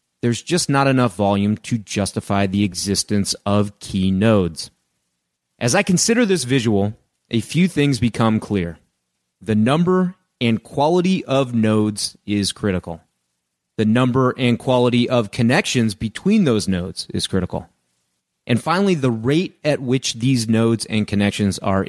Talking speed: 145 wpm